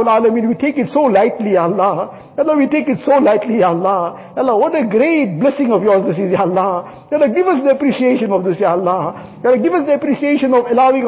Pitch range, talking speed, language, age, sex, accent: 200-275 Hz, 255 wpm, English, 50-69, male, Indian